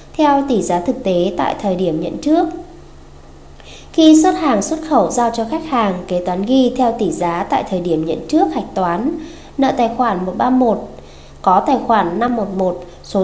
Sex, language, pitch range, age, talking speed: female, Vietnamese, 190-275 Hz, 20-39, 185 wpm